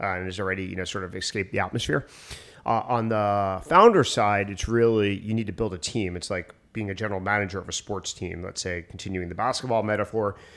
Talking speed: 225 wpm